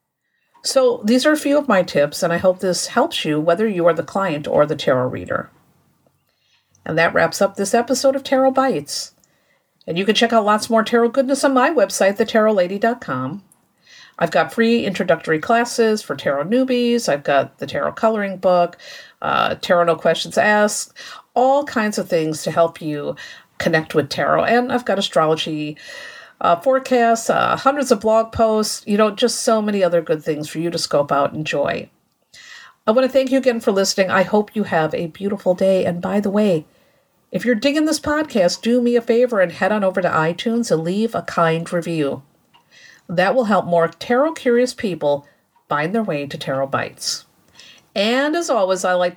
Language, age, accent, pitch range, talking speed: English, 50-69, American, 170-240 Hz, 190 wpm